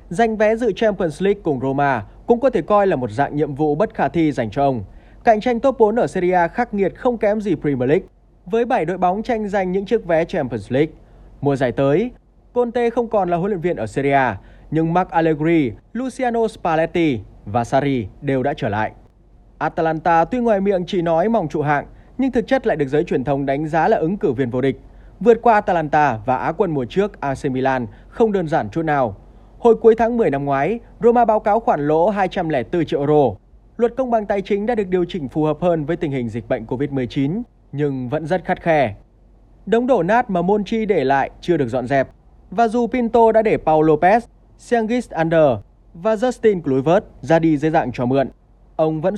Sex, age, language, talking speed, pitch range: male, 20-39, Vietnamese, 220 wpm, 140-220 Hz